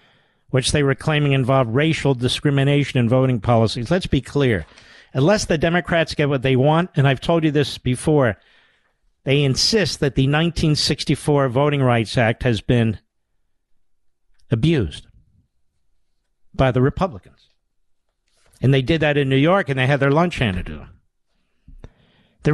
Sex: male